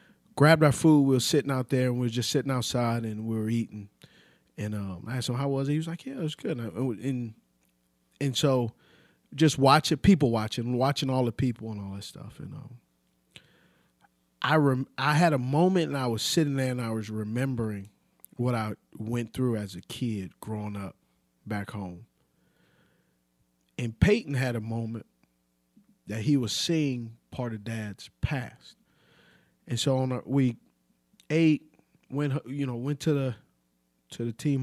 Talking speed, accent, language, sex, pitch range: 175 wpm, American, English, male, 105-140 Hz